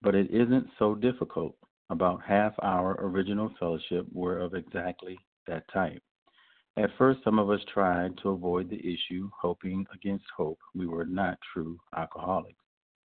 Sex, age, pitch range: male, 50-69, 85-100 Hz